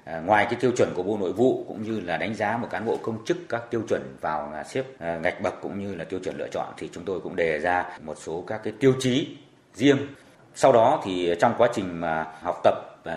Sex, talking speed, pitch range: male, 250 wpm, 115-160 Hz